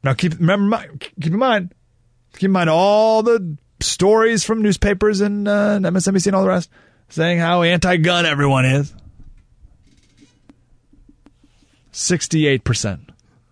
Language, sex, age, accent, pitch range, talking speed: English, male, 30-49, American, 120-160 Hz, 120 wpm